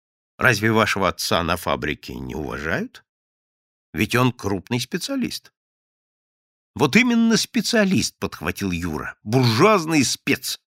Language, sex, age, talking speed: Russian, male, 50-69, 100 wpm